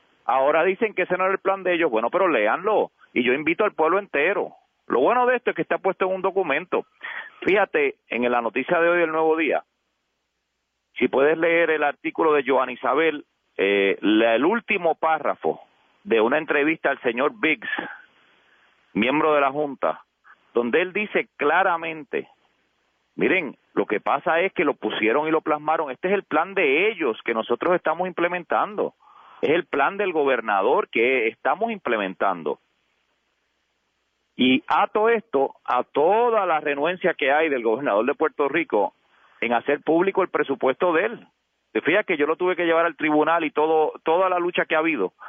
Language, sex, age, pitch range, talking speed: Spanish, male, 40-59, 150-195 Hz, 180 wpm